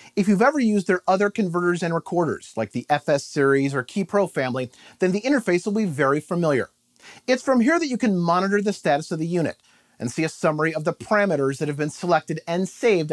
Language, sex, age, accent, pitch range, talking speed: English, male, 40-59, American, 155-210 Hz, 220 wpm